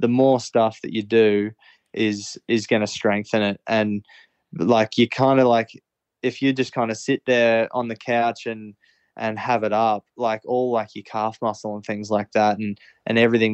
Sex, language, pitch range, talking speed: male, English, 105-125 Hz, 205 wpm